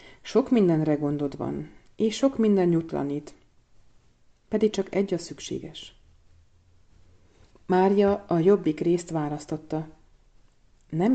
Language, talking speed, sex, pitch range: Hungarian, 100 wpm, female, 150-180 Hz